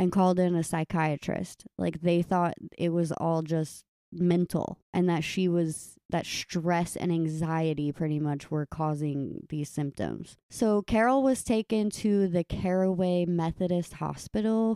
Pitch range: 165-195 Hz